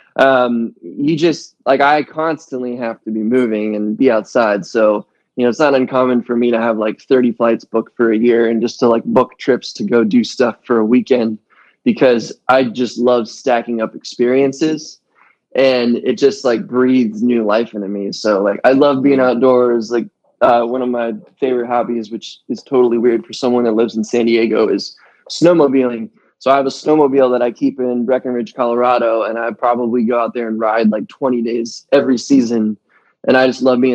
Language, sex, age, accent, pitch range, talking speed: English, male, 20-39, American, 115-130 Hz, 200 wpm